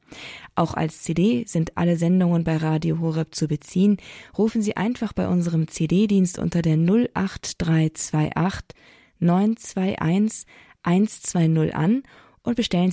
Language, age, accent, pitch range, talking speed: German, 20-39, German, 160-190 Hz, 115 wpm